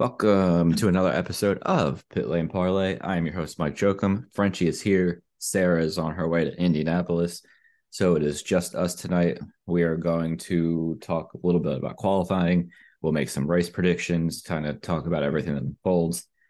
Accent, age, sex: American, 20-39, male